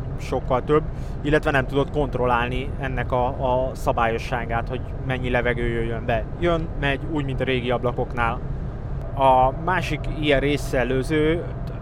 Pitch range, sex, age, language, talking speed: 125-140 Hz, male, 20-39, Hungarian, 130 wpm